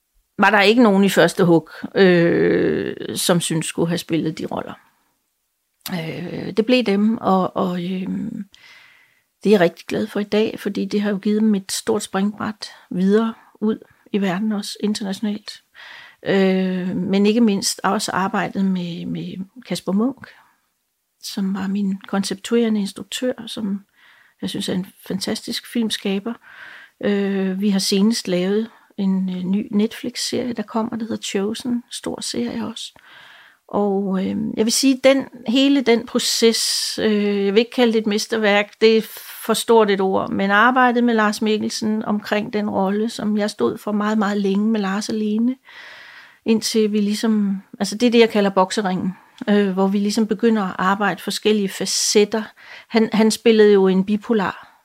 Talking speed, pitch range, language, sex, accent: 165 wpm, 195-225 Hz, Danish, female, native